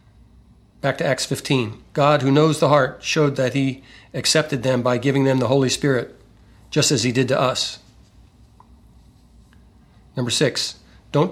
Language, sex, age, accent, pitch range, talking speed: English, male, 40-59, American, 120-145 Hz, 155 wpm